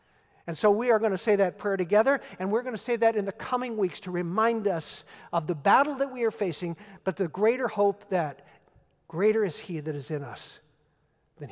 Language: English